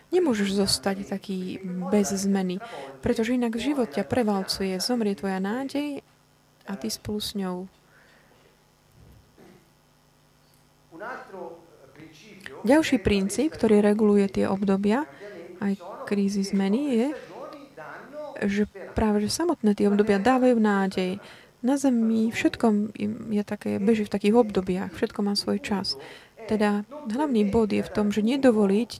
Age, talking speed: 30-49, 115 wpm